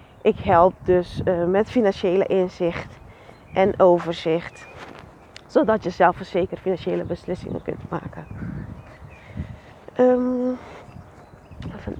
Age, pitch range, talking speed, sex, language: 30-49, 180-235 Hz, 90 wpm, female, Dutch